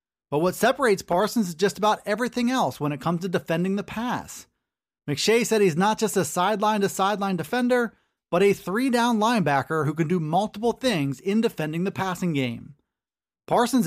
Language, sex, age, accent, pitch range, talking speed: English, male, 30-49, American, 175-225 Hz, 170 wpm